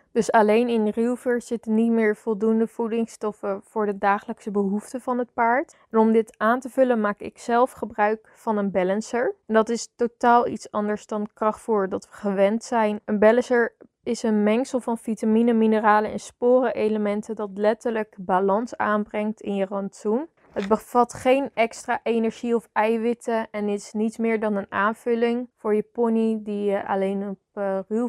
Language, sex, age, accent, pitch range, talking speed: Dutch, female, 20-39, Dutch, 210-235 Hz, 170 wpm